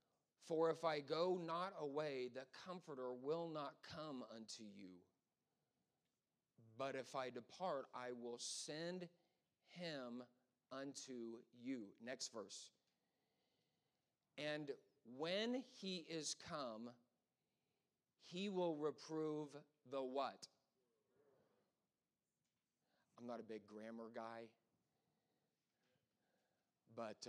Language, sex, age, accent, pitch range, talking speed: English, male, 40-59, American, 115-150 Hz, 90 wpm